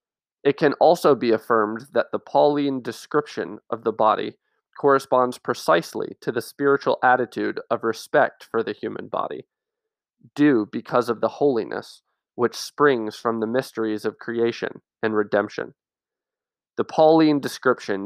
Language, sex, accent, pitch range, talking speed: English, male, American, 115-145 Hz, 135 wpm